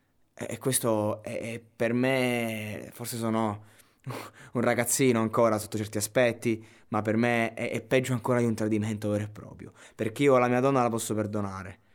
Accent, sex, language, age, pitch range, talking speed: native, male, Italian, 20-39, 105-115 Hz, 170 wpm